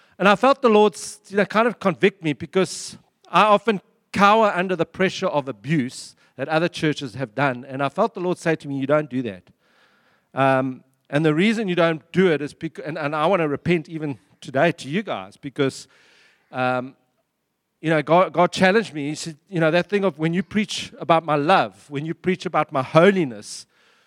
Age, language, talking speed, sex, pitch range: 50-69, English, 210 wpm, male, 140-190 Hz